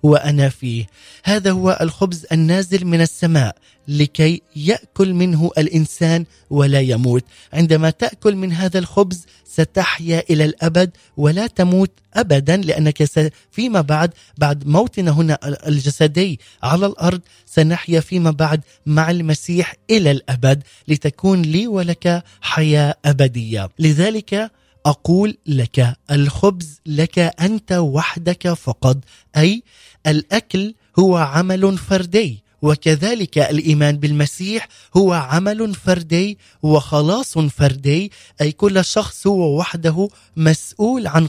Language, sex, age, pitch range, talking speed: Arabic, male, 30-49, 145-185 Hz, 110 wpm